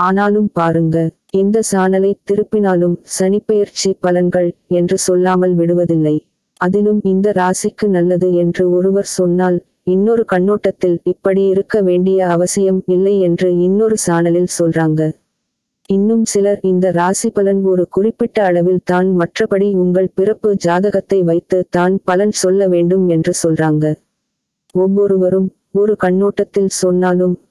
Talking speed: 105 wpm